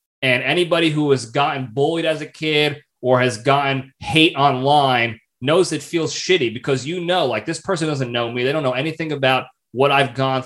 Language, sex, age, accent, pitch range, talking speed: English, male, 30-49, American, 110-135 Hz, 200 wpm